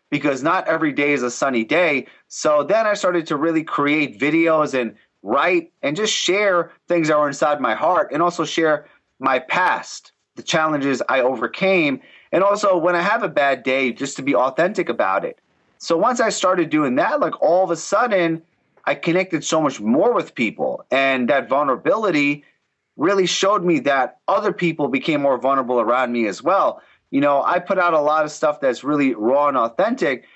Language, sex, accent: English, male, American